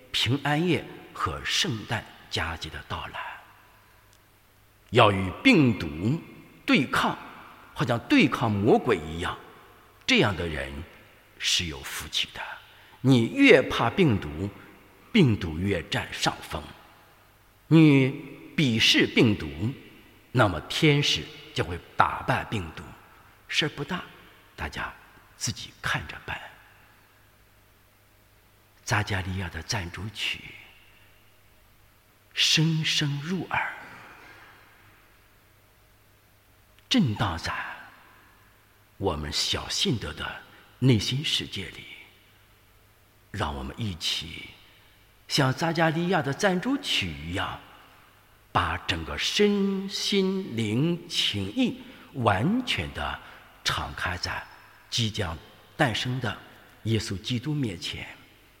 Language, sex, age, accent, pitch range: English, male, 50-69, Chinese, 100-130 Hz